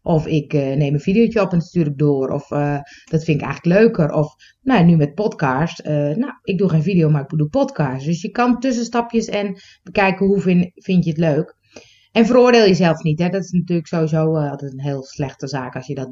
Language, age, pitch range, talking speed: Dutch, 30-49, 160-220 Hz, 235 wpm